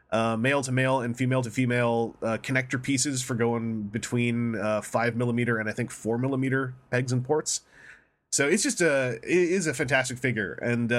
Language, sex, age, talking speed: English, male, 20-39, 185 wpm